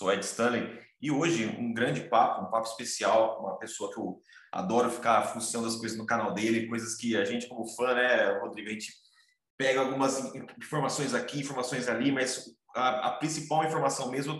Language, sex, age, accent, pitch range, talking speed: Portuguese, male, 30-49, Brazilian, 120-175 Hz, 185 wpm